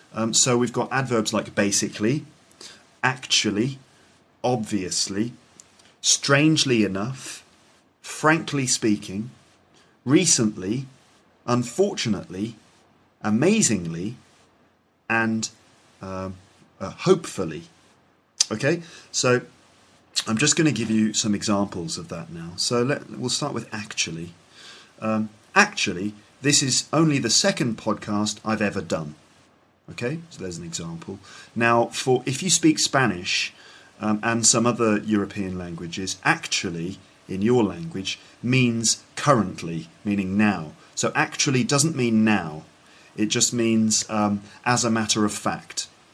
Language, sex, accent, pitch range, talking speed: English, male, British, 95-120 Hz, 115 wpm